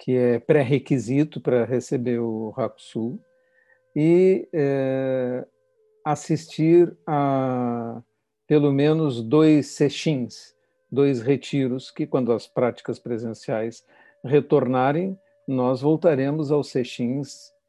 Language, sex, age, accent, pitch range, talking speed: Portuguese, male, 50-69, Brazilian, 120-150 Hz, 90 wpm